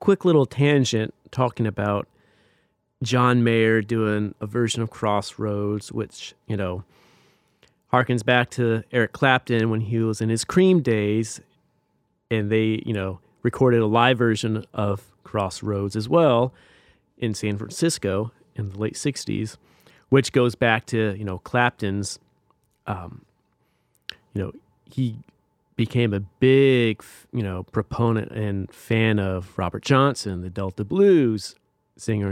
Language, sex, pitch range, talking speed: English, male, 100-125 Hz, 135 wpm